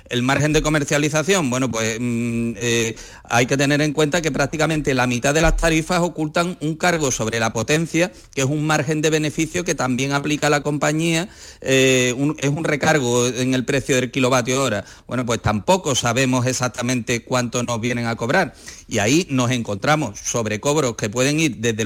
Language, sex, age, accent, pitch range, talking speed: Spanish, male, 40-59, Spanish, 120-150 Hz, 180 wpm